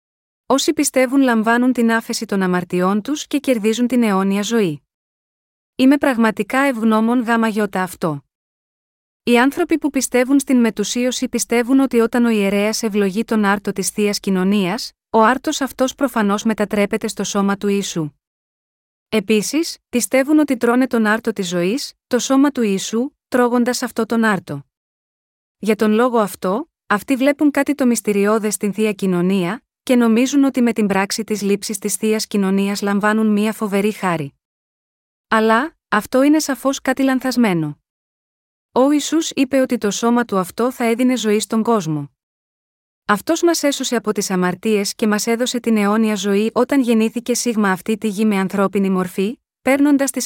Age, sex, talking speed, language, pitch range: 30-49, female, 155 wpm, Greek, 205-250 Hz